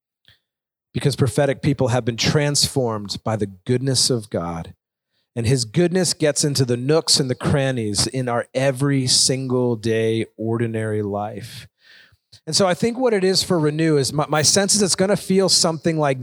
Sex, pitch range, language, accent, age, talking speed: male, 130-175 Hz, English, American, 40-59, 180 wpm